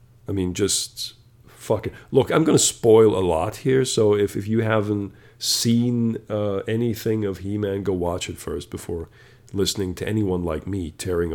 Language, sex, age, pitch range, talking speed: English, male, 40-59, 95-120 Hz, 175 wpm